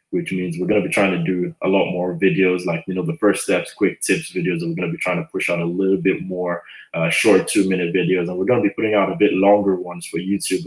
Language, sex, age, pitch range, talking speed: English, male, 20-39, 90-100 Hz, 300 wpm